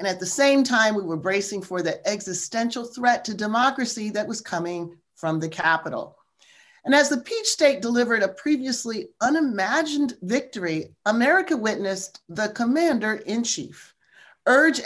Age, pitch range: 40-59, 200-280 Hz